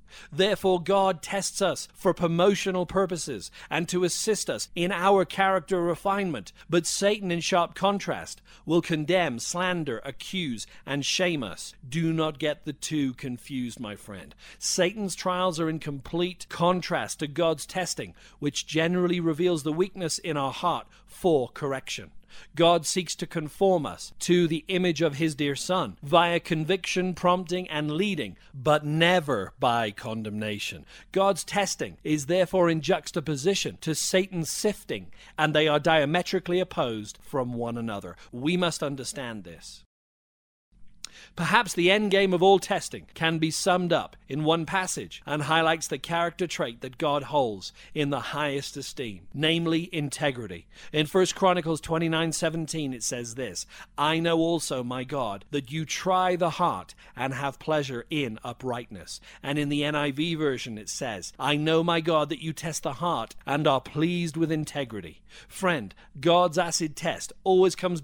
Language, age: English, 40-59